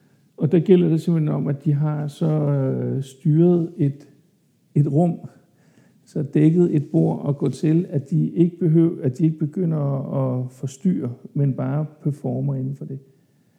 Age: 60-79